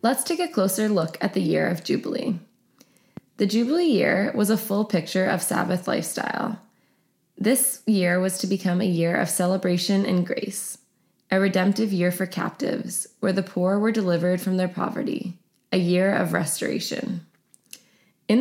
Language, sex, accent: English, female, American